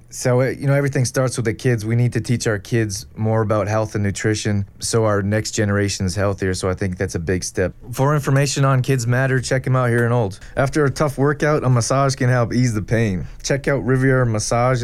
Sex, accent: male, American